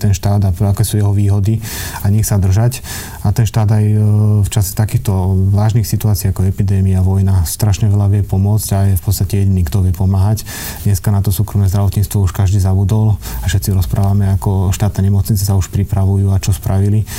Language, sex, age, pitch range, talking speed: Slovak, male, 30-49, 95-105 Hz, 195 wpm